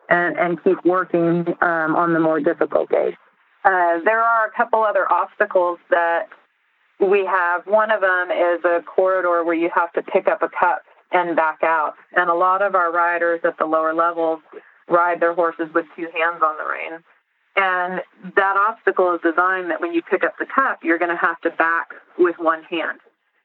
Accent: American